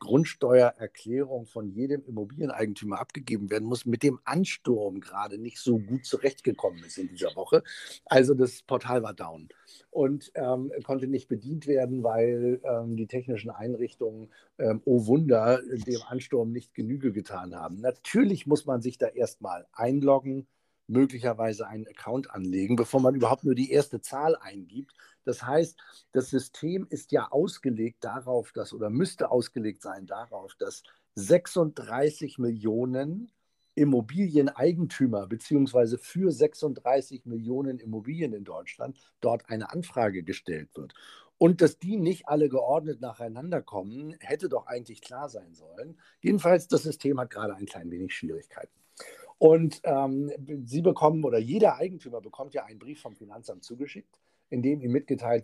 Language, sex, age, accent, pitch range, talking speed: German, male, 50-69, German, 120-150 Hz, 145 wpm